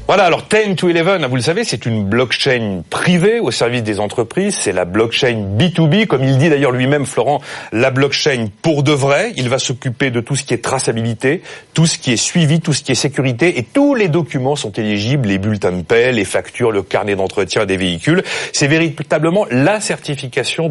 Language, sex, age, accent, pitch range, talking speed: French, male, 40-59, French, 110-155 Hz, 205 wpm